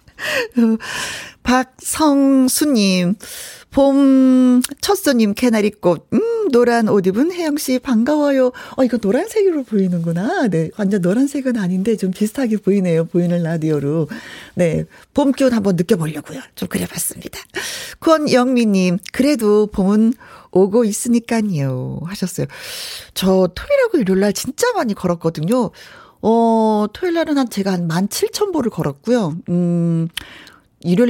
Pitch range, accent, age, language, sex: 185-275 Hz, native, 40-59, Korean, female